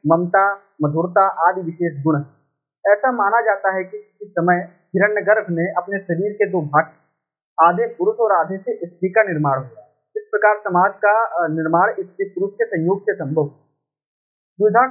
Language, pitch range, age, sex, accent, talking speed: Hindi, 170-215 Hz, 40-59, male, native, 115 wpm